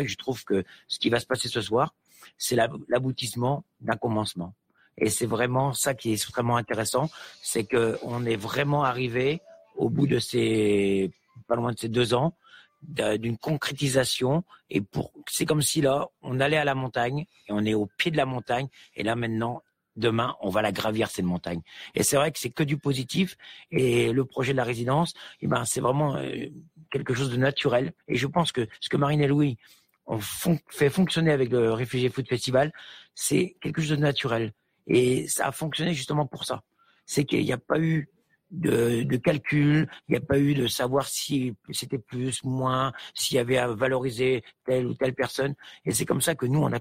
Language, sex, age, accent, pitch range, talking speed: French, male, 50-69, French, 120-150 Hz, 200 wpm